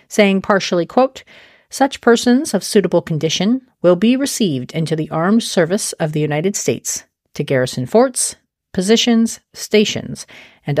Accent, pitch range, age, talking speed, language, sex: American, 165-230 Hz, 40-59, 135 wpm, English, female